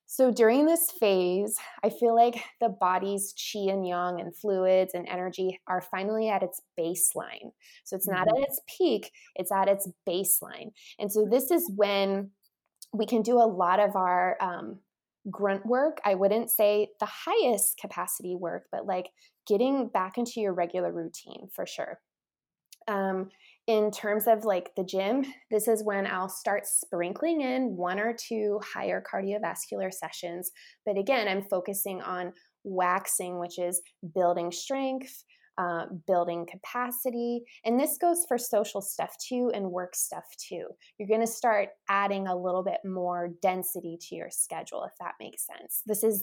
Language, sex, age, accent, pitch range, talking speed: English, female, 20-39, American, 185-230 Hz, 165 wpm